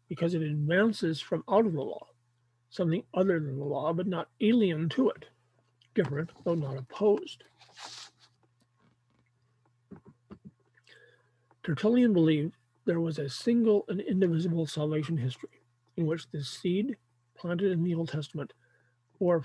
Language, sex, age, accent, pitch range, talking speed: English, male, 50-69, American, 135-180 Hz, 130 wpm